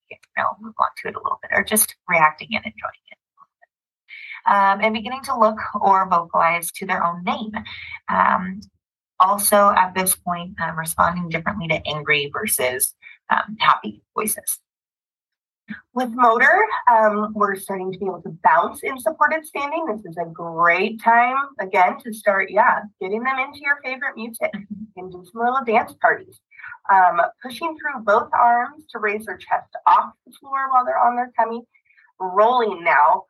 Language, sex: English, female